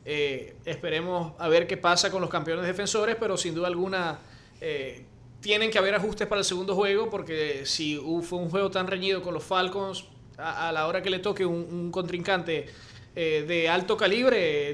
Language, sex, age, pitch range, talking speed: English, male, 20-39, 155-195 Hz, 195 wpm